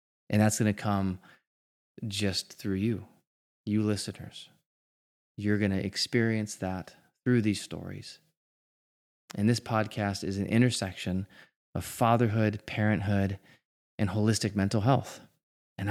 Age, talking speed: 20-39, 120 wpm